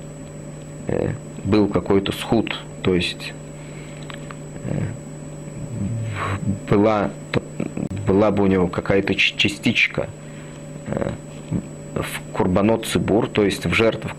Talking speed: 75 wpm